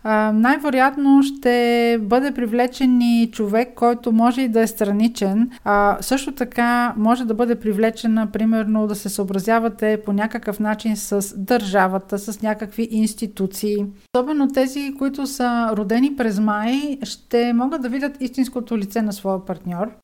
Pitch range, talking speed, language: 210-240 Hz, 145 wpm, Bulgarian